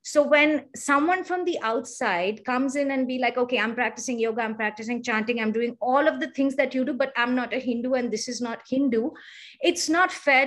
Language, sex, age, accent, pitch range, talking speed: English, female, 30-49, Indian, 240-275 Hz, 230 wpm